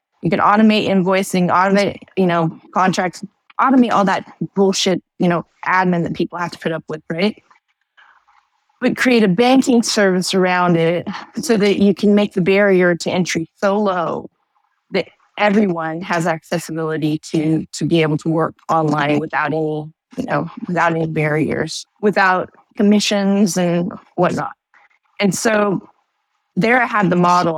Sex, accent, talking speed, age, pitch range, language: female, American, 150 wpm, 30-49, 160-200 Hz, English